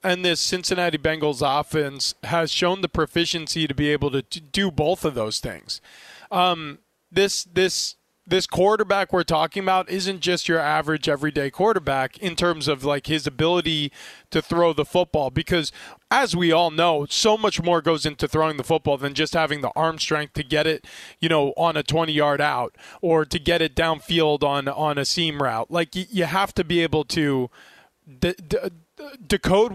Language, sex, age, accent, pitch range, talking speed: English, male, 20-39, American, 150-185 Hz, 180 wpm